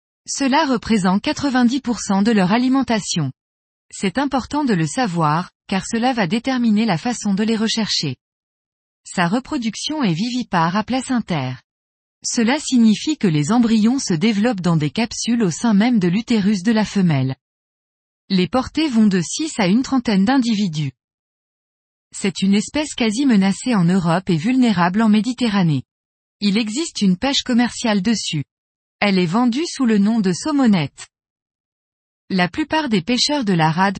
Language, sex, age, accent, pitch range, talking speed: French, female, 20-39, French, 180-250 Hz, 150 wpm